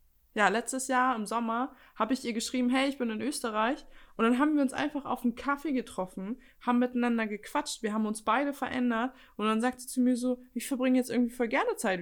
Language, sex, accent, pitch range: German, female, German, 200-250 Hz